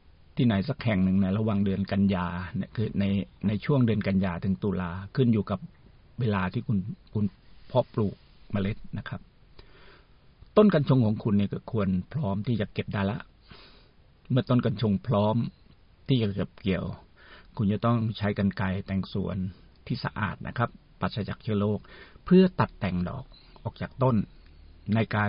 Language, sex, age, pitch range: Thai, male, 60-79, 95-115 Hz